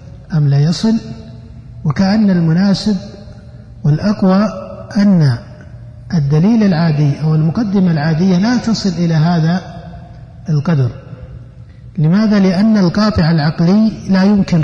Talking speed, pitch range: 95 wpm, 135-190 Hz